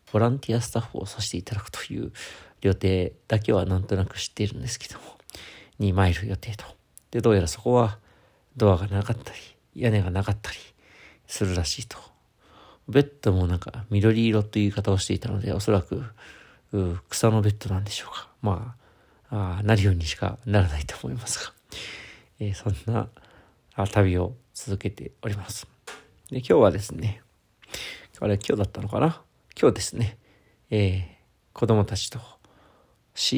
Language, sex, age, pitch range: Japanese, male, 40-59, 95-115 Hz